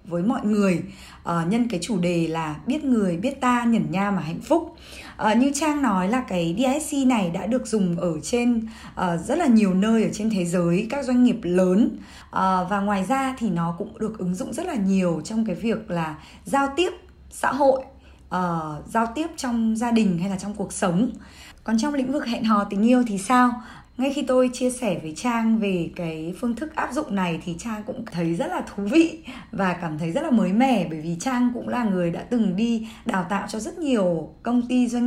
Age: 20-39